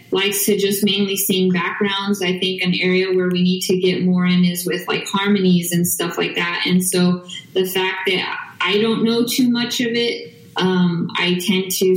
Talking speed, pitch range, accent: 205 wpm, 180-195 Hz, American